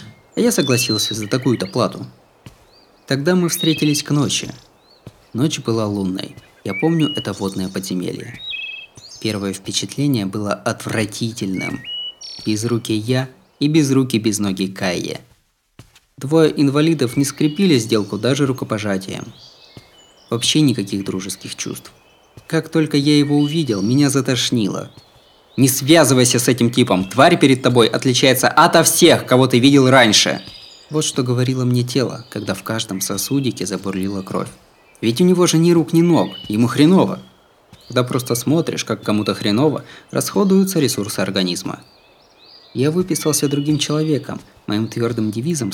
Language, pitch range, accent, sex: Russian, 105-150 Hz, native, male